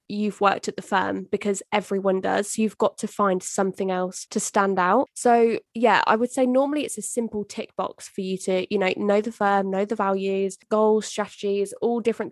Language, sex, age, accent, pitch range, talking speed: English, female, 10-29, British, 200-230 Hz, 210 wpm